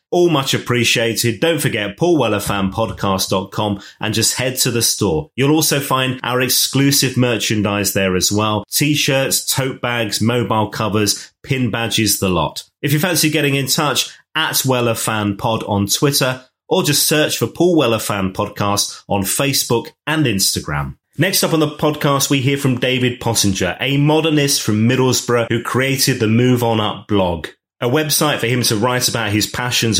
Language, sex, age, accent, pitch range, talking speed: English, male, 30-49, British, 105-135 Hz, 165 wpm